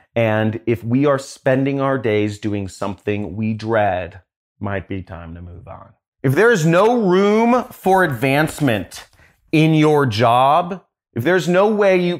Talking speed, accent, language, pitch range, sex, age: 155 wpm, American, English, 110-140 Hz, male, 30-49